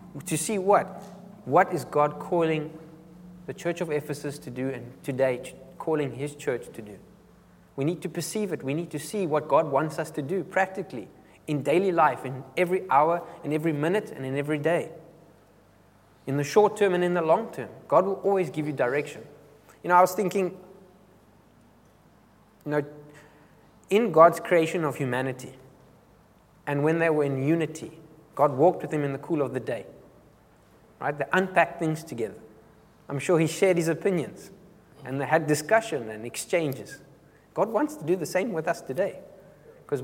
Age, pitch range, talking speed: 20-39, 140-180 Hz, 180 wpm